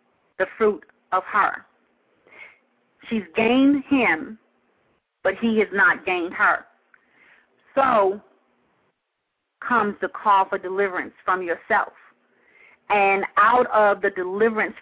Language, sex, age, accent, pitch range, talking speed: English, female, 40-59, American, 190-235 Hz, 105 wpm